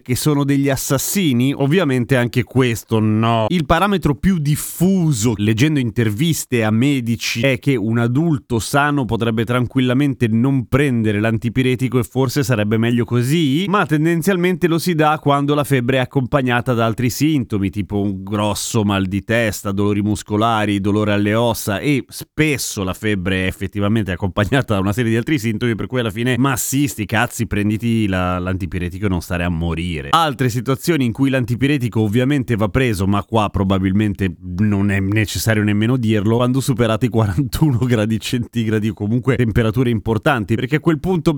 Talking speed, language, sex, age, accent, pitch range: 160 wpm, Italian, male, 30-49, native, 105-140 Hz